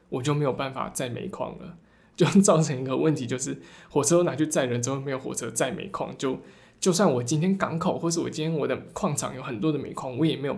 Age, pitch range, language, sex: 20-39, 130-170 Hz, Chinese, male